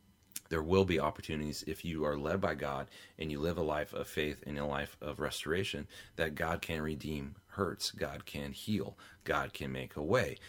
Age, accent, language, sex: 30-49, American, English, male